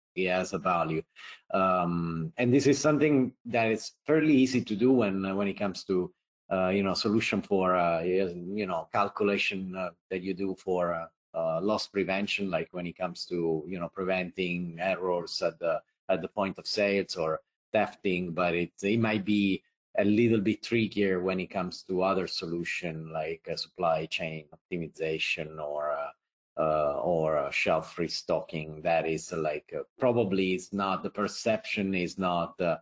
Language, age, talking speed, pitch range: English, 30-49, 175 wpm, 85-100 Hz